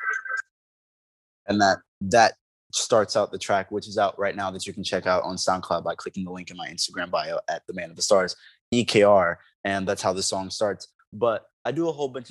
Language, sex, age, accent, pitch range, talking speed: English, male, 20-39, American, 95-115 Hz, 225 wpm